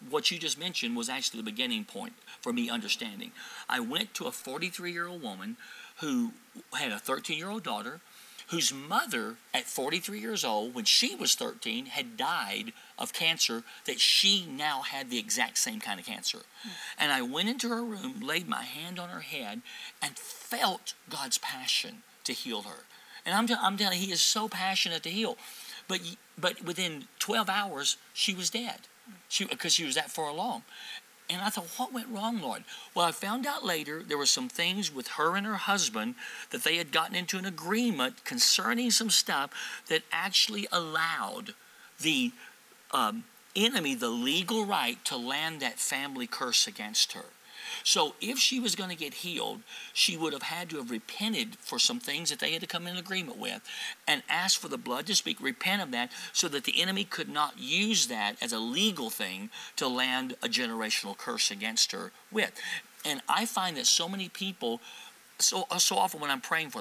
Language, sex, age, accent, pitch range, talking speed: English, male, 50-69, American, 175-240 Hz, 190 wpm